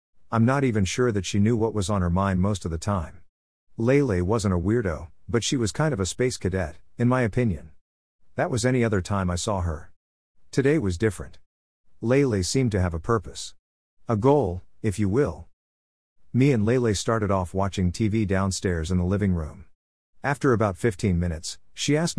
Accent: American